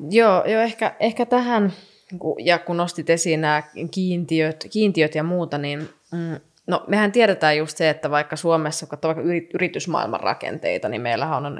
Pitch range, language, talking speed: 155-190 Hz, Finnish, 155 wpm